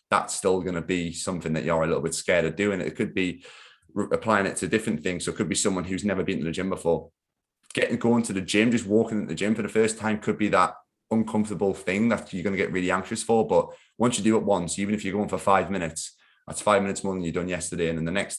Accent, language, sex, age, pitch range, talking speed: British, English, male, 20-39, 80-100 Hz, 285 wpm